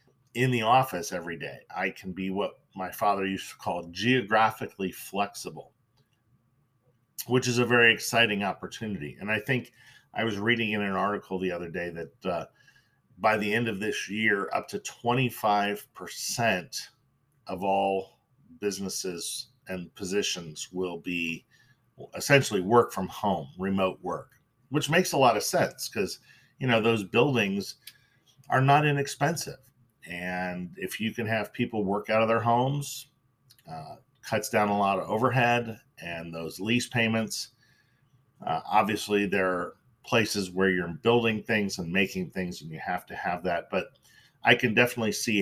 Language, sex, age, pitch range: English, male, 40-59, 95-130 Hz